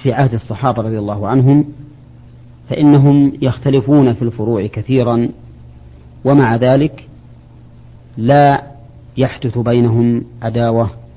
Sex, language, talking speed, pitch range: male, Arabic, 90 wpm, 115-135 Hz